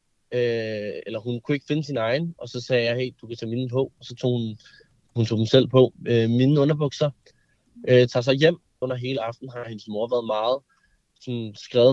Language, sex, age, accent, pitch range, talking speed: Danish, male, 20-39, native, 115-135 Hz, 205 wpm